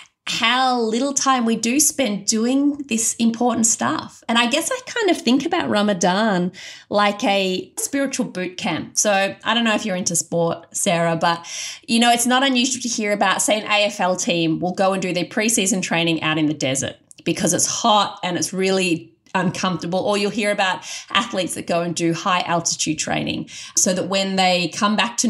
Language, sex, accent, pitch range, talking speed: English, female, Australian, 175-230 Hz, 195 wpm